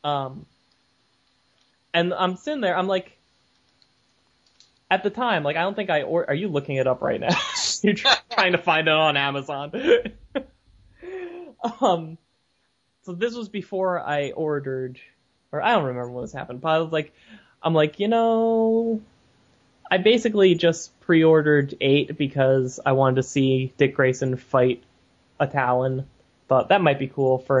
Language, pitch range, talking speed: English, 135-185 Hz, 160 wpm